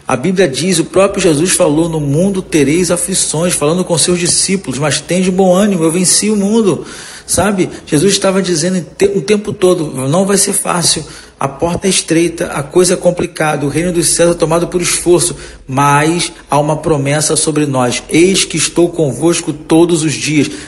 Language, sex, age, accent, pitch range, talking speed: Portuguese, male, 40-59, Brazilian, 150-175 Hz, 185 wpm